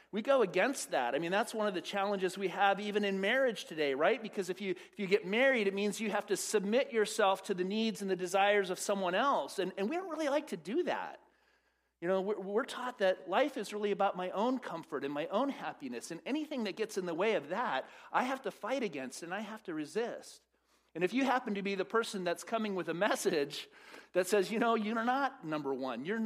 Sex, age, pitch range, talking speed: male, 40-59, 150-220 Hz, 245 wpm